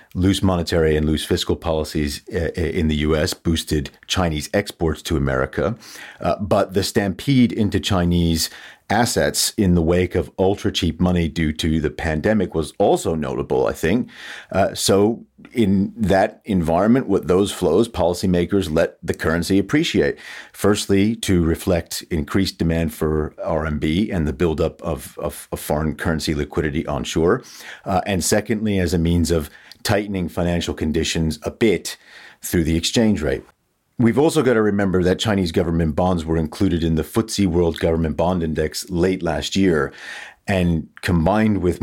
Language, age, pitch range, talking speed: English, 40-59, 80-95 Hz, 155 wpm